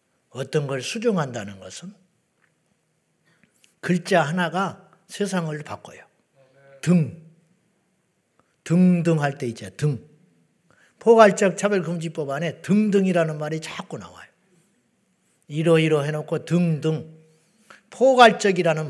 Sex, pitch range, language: male, 155-200 Hz, Korean